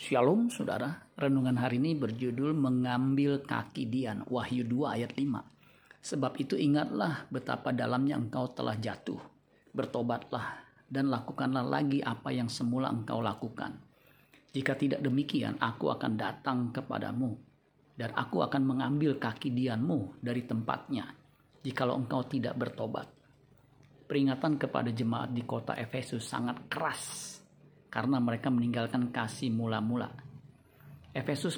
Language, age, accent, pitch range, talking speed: Indonesian, 40-59, native, 125-140 Hz, 120 wpm